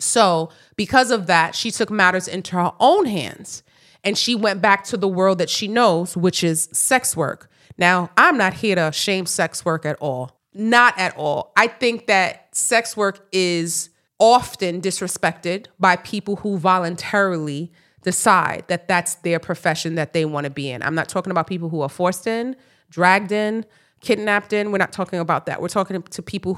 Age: 30-49